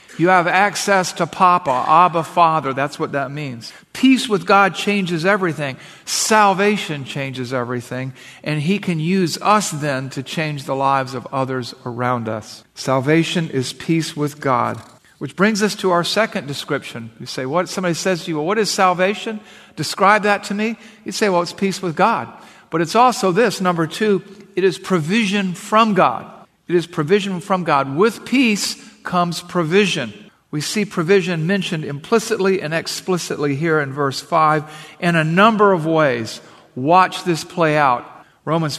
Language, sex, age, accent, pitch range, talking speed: English, male, 50-69, American, 150-195 Hz, 165 wpm